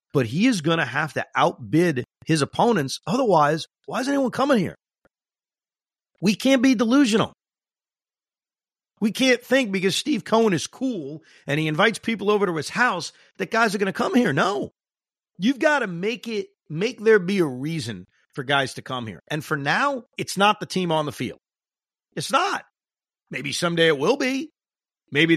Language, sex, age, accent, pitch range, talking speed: English, male, 40-59, American, 135-200 Hz, 180 wpm